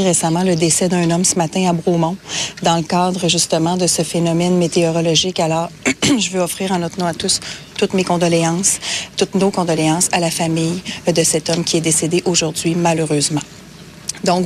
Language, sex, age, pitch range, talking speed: French, female, 40-59, 170-190 Hz, 185 wpm